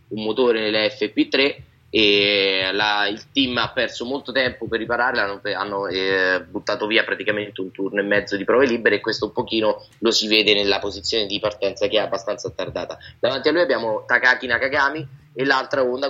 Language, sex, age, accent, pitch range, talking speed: Italian, male, 20-39, native, 105-130 Hz, 185 wpm